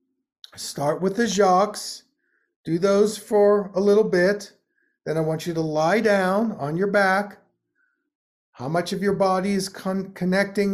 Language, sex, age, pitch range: English, male, 50-69, 165-200 Hz